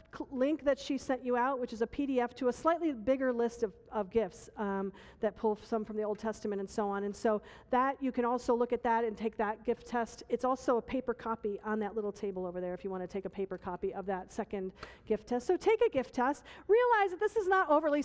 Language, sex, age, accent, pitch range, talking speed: English, female, 40-59, American, 200-255 Hz, 260 wpm